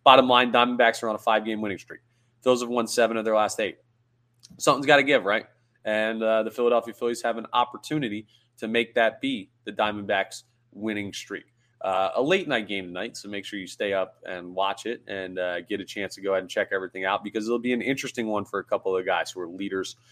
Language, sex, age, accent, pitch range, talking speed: English, male, 30-49, American, 100-120 Hz, 235 wpm